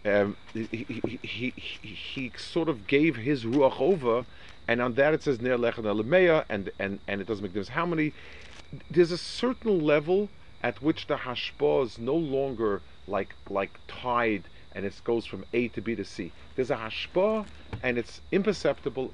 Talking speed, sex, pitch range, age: 175 wpm, male, 95-140 Hz, 40-59